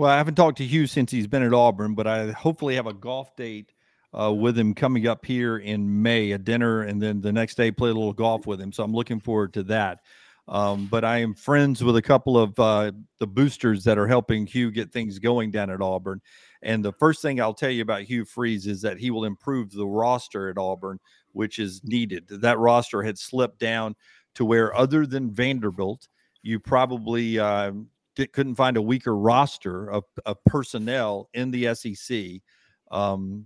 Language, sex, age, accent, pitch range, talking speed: English, male, 50-69, American, 105-125 Hz, 205 wpm